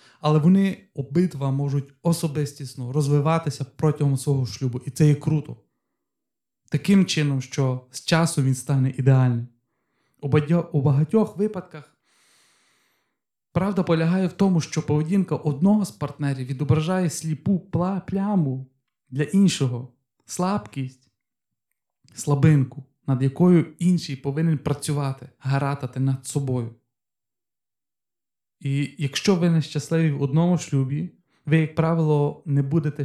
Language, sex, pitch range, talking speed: Ukrainian, male, 135-165 Hz, 110 wpm